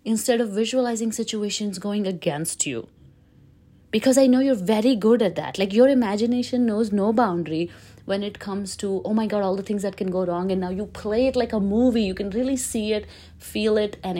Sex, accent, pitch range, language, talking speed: female, Indian, 165-210 Hz, English, 215 wpm